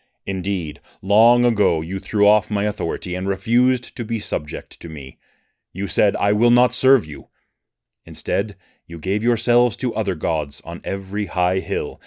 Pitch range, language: 95-110 Hz, English